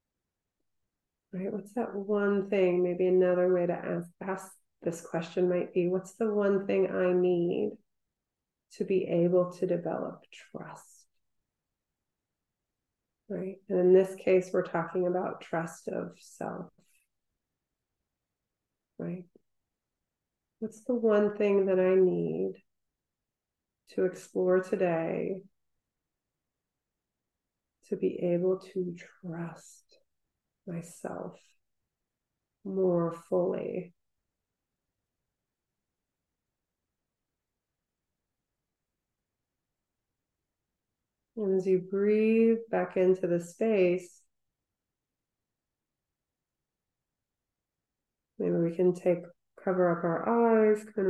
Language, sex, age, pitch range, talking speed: English, female, 30-49, 175-200 Hz, 85 wpm